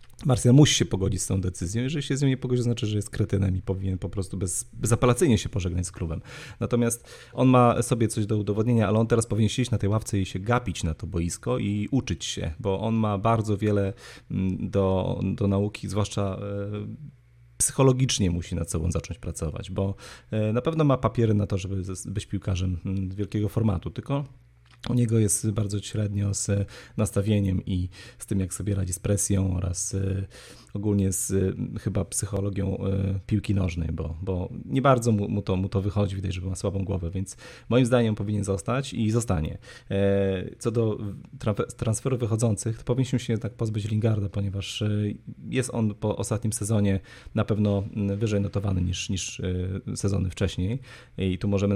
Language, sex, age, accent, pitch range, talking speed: Polish, male, 30-49, native, 95-120 Hz, 175 wpm